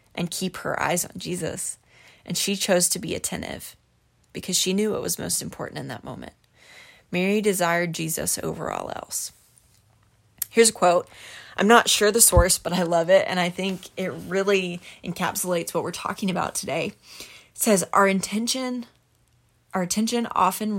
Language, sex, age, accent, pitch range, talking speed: English, female, 20-39, American, 170-200 Hz, 165 wpm